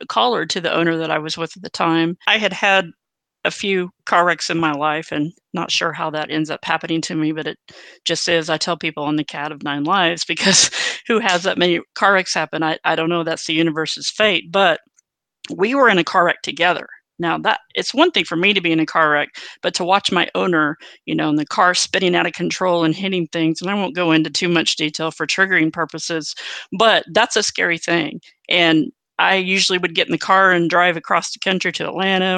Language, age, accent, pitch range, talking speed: English, 40-59, American, 160-190 Hz, 240 wpm